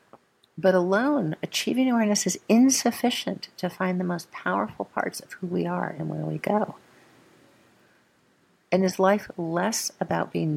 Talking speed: 150 wpm